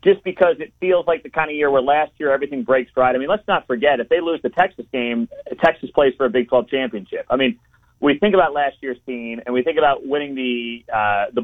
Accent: American